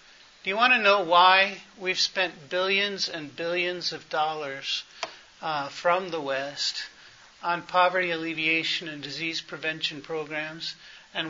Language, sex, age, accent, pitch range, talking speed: English, male, 40-59, American, 155-190 Hz, 135 wpm